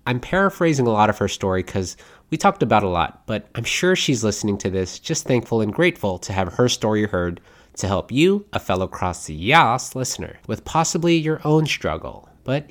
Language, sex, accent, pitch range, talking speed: English, male, American, 100-145 Hz, 205 wpm